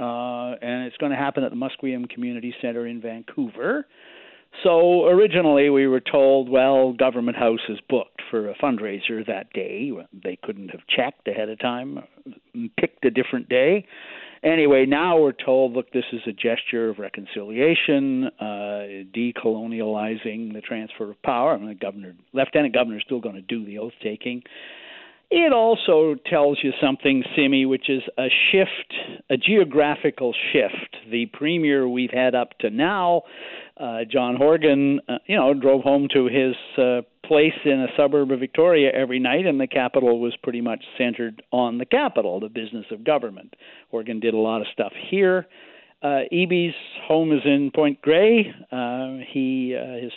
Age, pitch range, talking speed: 60-79, 120-155 Hz, 170 wpm